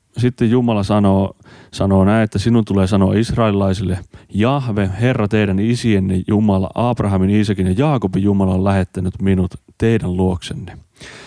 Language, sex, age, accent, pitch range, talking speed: Finnish, male, 30-49, native, 95-110 Hz, 135 wpm